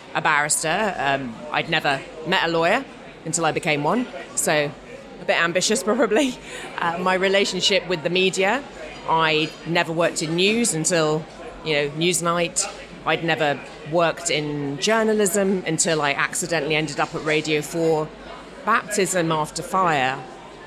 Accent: British